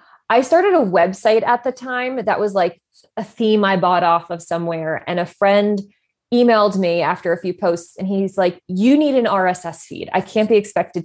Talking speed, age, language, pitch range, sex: 205 wpm, 20-39, English, 170-210 Hz, female